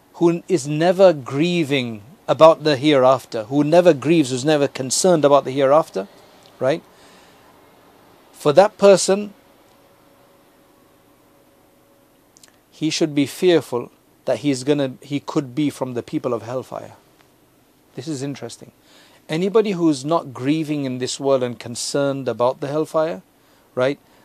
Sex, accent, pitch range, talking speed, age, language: male, South African, 135-170 Hz, 125 wpm, 50-69, English